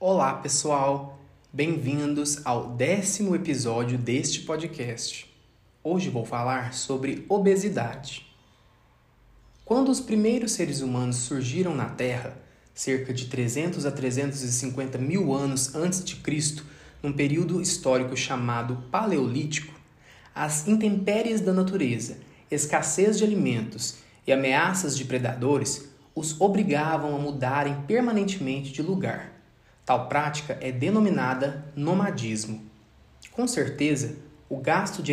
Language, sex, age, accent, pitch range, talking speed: Portuguese, male, 20-39, Brazilian, 125-170 Hz, 110 wpm